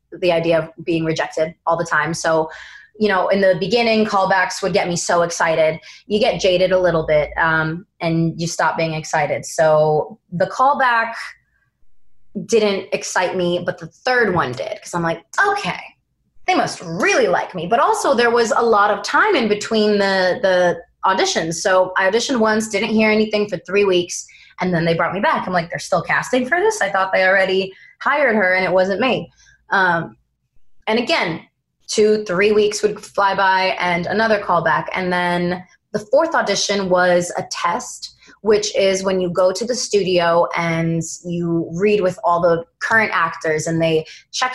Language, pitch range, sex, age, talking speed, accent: English, 170-215 Hz, female, 20-39, 185 wpm, American